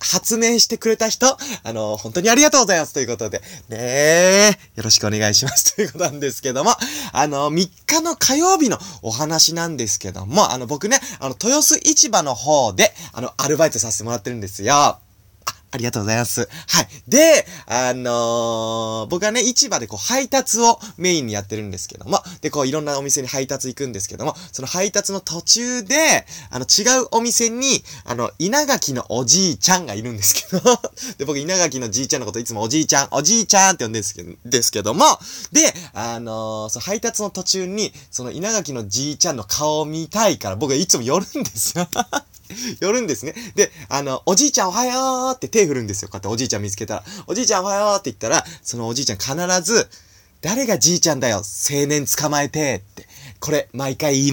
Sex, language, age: male, Japanese, 20-39